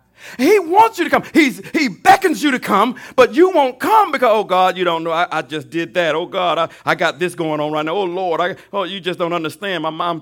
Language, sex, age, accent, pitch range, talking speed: English, male, 50-69, American, 130-200 Hz, 270 wpm